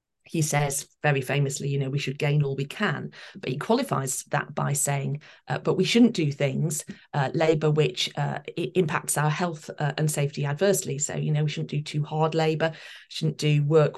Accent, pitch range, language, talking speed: British, 150-190 Hz, English, 200 wpm